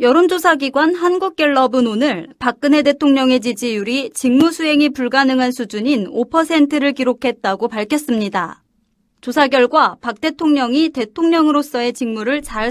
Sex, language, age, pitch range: female, Korean, 30-49, 245-305 Hz